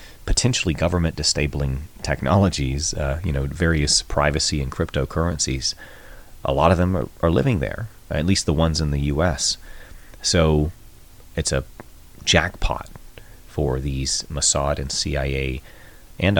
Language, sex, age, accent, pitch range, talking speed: English, male, 30-49, American, 70-95 Hz, 130 wpm